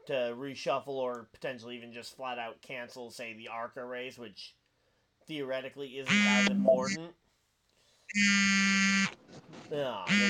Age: 30-49